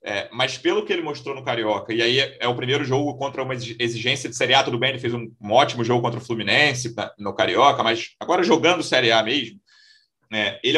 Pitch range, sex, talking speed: 120-165 Hz, male, 240 wpm